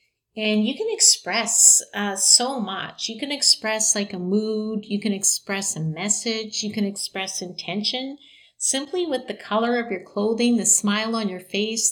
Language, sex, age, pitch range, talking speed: English, female, 50-69, 200-235 Hz, 170 wpm